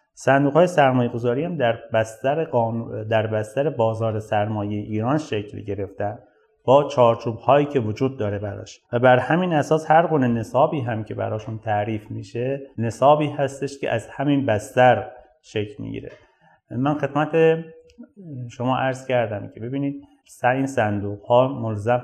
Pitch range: 105-130 Hz